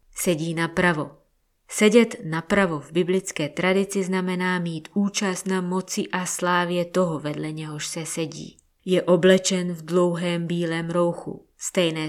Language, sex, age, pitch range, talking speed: Czech, female, 20-39, 160-185 Hz, 130 wpm